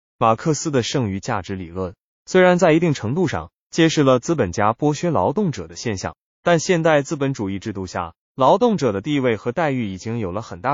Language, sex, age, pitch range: Chinese, male, 20-39, 100-150 Hz